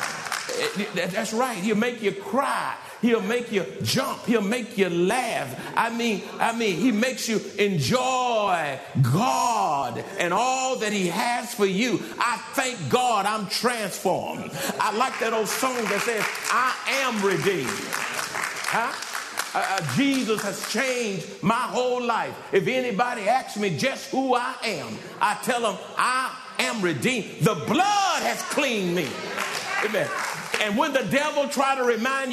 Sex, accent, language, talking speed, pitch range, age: male, American, English, 150 wpm, 210-265 Hz, 50-69